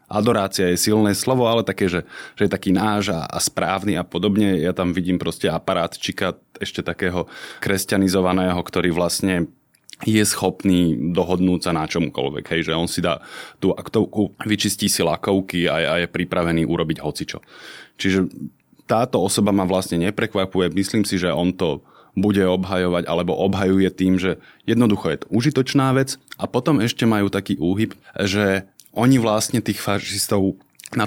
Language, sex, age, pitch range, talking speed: Slovak, male, 20-39, 90-100 Hz, 160 wpm